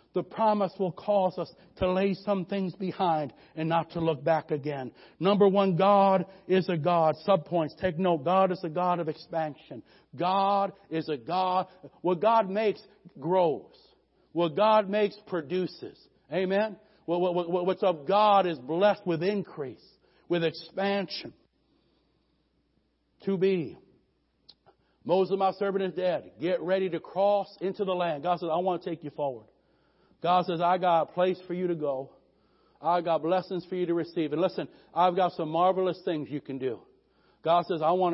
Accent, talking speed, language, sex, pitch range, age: American, 170 wpm, English, male, 160-190 Hz, 60-79